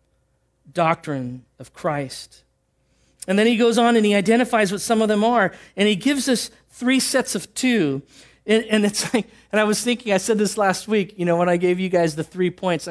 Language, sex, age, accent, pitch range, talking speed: English, male, 40-59, American, 185-235 Hz, 220 wpm